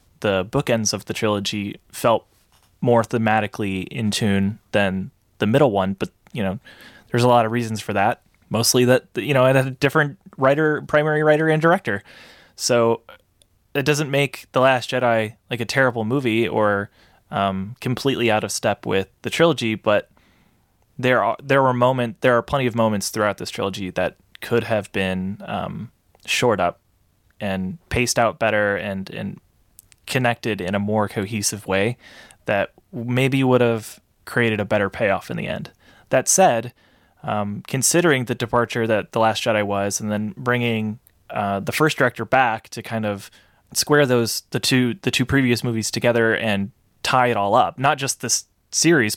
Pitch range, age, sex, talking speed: 105-125 Hz, 20-39, male, 170 wpm